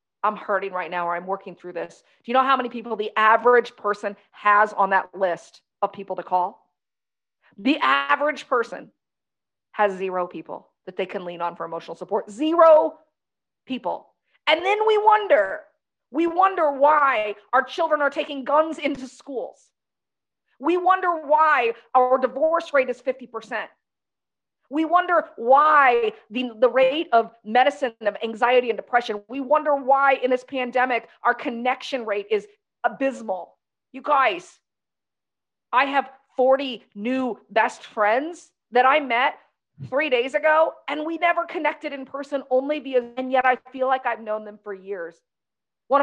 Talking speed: 155 wpm